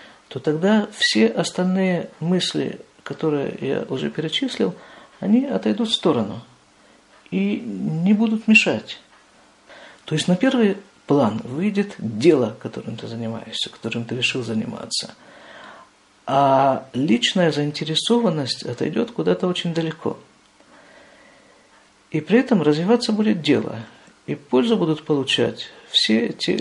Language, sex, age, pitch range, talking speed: Russian, male, 50-69, 130-195 Hz, 115 wpm